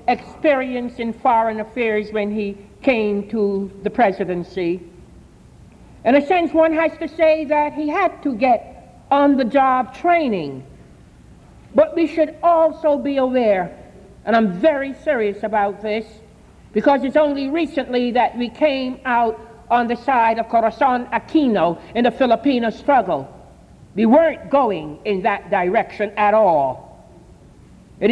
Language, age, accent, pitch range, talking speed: English, 60-79, American, 215-290 Hz, 135 wpm